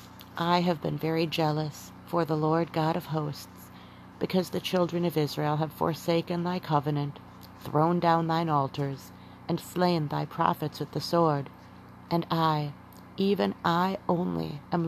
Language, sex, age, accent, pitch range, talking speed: English, female, 40-59, American, 135-165 Hz, 150 wpm